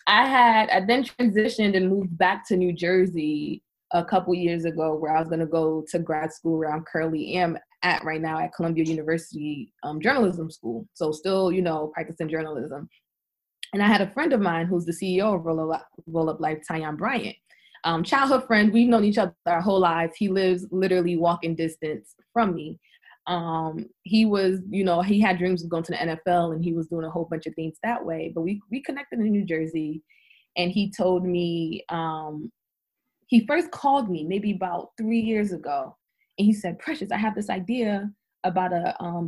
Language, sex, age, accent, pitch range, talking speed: English, female, 20-39, American, 165-215 Hz, 200 wpm